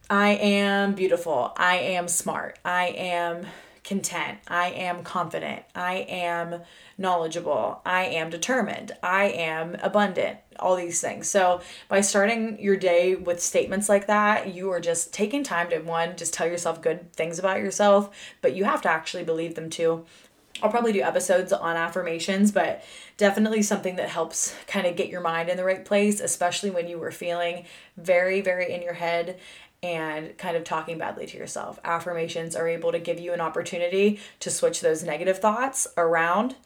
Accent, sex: American, female